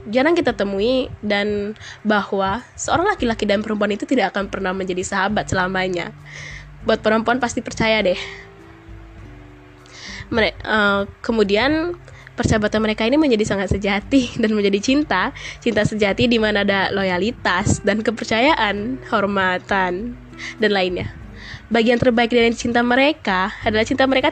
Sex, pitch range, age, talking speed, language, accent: female, 195-240 Hz, 20-39, 125 wpm, Indonesian, native